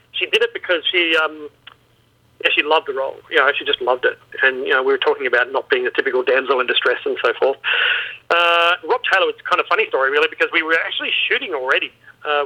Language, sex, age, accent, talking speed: English, male, 40-59, Australian, 245 wpm